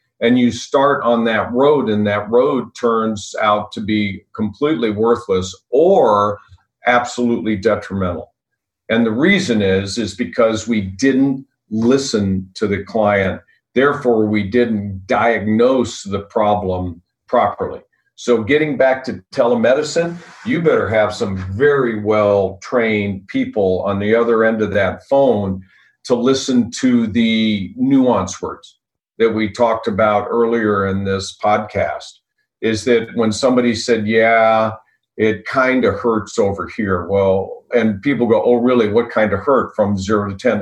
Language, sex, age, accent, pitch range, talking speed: English, male, 50-69, American, 105-120 Hz, 140 wpm